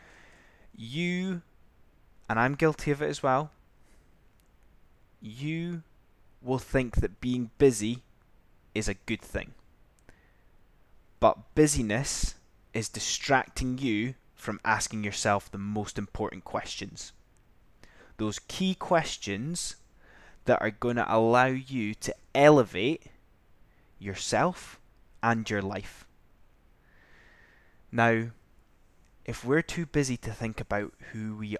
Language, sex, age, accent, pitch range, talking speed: English, male, 10-29, British, 100-130 Hz, 105 wpm